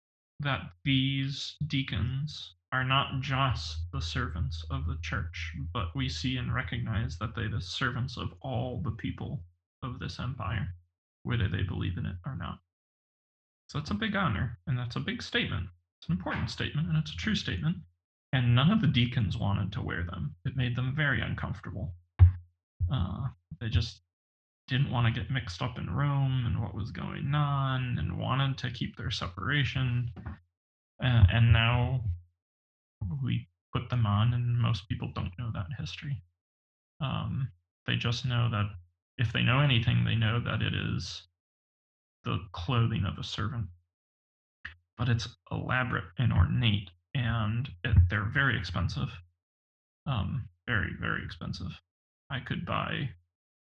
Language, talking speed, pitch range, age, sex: English, 155 wpm, 85-125 Hz, 20-39, male